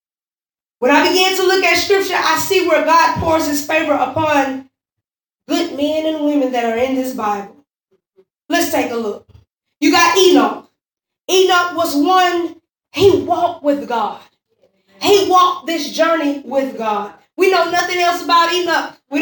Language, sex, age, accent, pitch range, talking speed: English, female, 20-39, American, 285-365 Hz, 160 wpm